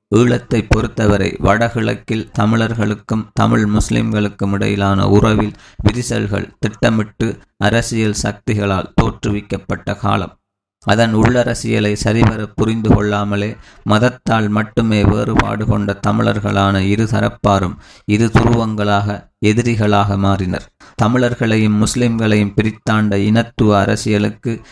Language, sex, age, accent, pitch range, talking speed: Tamil, male, 20-39, native, 105-115 Hz, 85 wpm